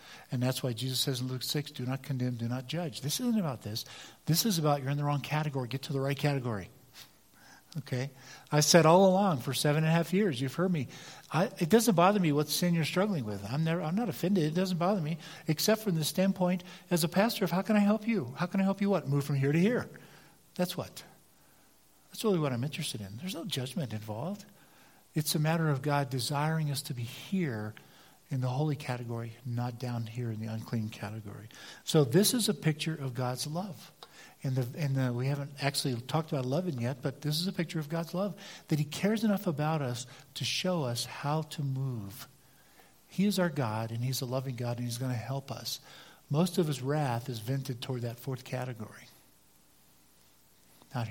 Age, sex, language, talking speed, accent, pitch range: 50-69, male, English, 215 wpm, American, 120-165 Hz